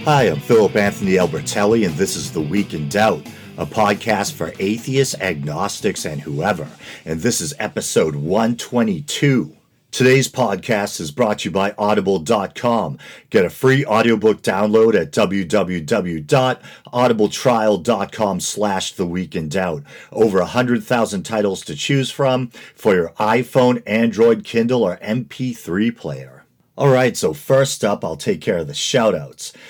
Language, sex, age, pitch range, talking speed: English, male, 50-69, 95-125 Hz, 135 wpm